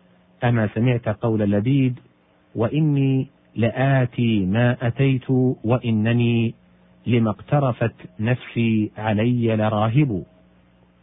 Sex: male